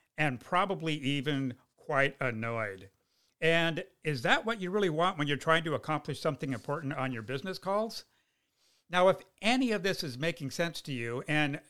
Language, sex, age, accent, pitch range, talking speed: English, male, 50-69, American, 130-175 Hz, 175 wpm